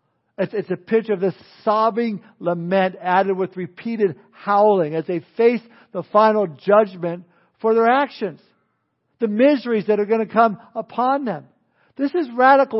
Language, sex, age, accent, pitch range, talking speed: English, male, 60-79, American, 190-230 Hz, 150 wpm